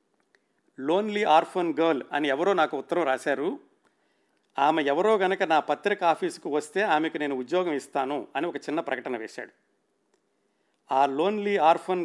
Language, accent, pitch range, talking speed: Telugu, native, 145-185 Hz, 135 wpm